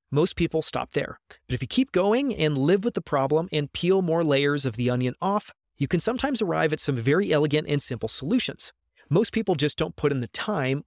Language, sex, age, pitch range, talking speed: English, male, 30-49, 130-175 Hz, 225 wpm